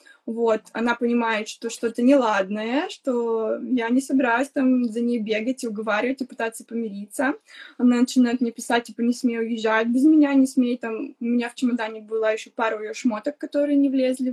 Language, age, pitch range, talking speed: Russian, 20-39, 230-270 Hz, 190 wpm